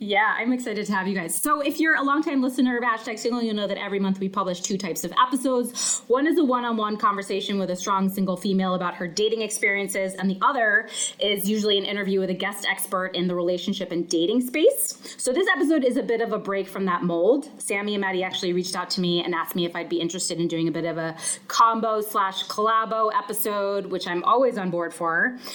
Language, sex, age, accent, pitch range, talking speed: English, female, 20-39, American, 185-240 Hz, 235 wpm